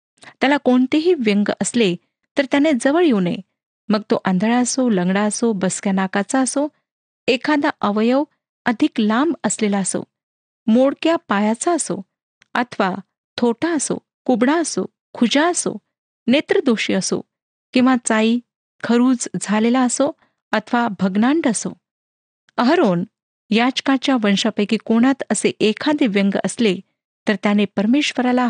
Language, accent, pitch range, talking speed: Marathi, native, 200-270 Hz, 115 wpm